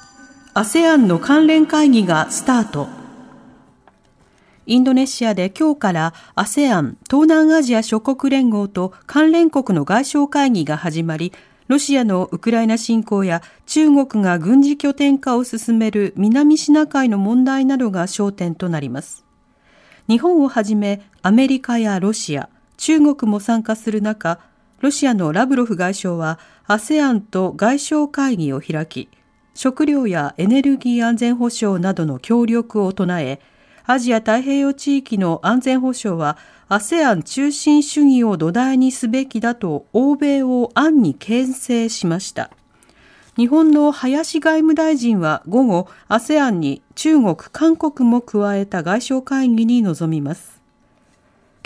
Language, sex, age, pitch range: Japanese, female, 40-59, 195-275 Hz